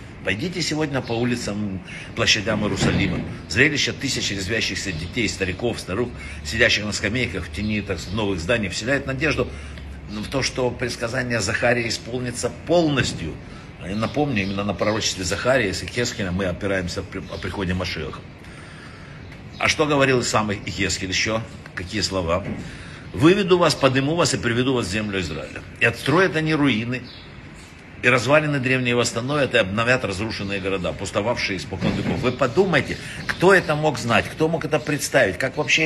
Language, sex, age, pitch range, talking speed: Russian, male, 60-79, 95-130 Hz, 145 wpm